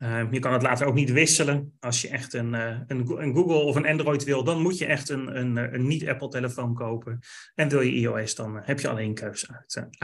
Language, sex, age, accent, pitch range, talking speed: Dutch, male, 30-49, Dutch, 125-150 Hz, 235 wpm